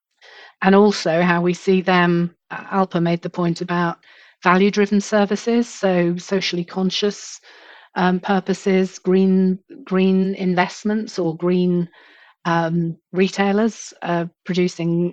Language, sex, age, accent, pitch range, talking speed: English, female, 40-59, British, 175-195 Hz, 110 wpm